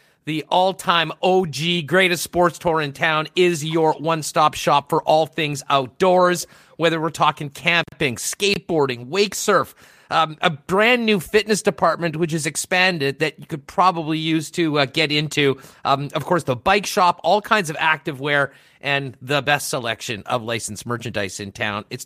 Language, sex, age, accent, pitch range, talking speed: English, male, 30-49, American, 145-190 Hz, 165 wpm